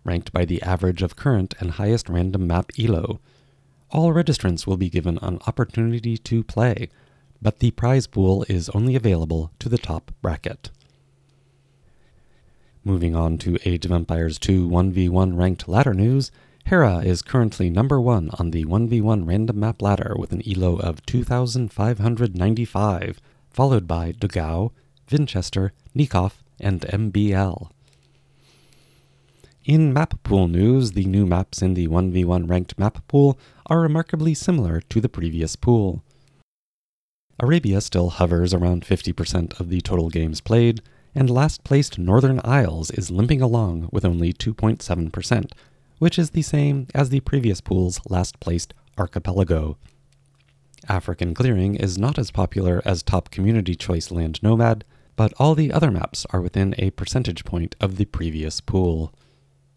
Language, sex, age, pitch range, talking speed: English, male, 30-49, 90-125 Hz, 140 wpm